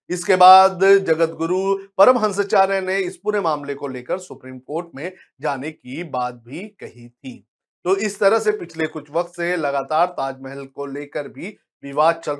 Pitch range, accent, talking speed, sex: 140-185 Hz, native, 175 wpm, male